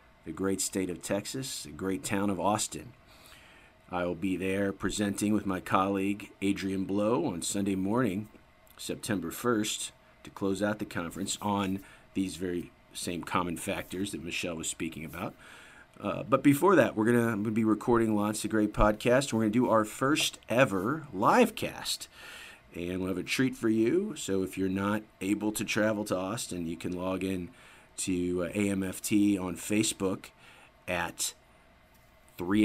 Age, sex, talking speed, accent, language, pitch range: 40-59, male, 165 wpm, American, English, 95-110 Hz